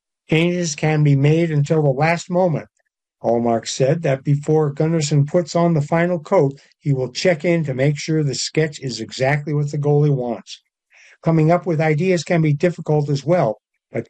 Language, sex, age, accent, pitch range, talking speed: English, male, 60-79, American, 135-165 Hz, 185 wpm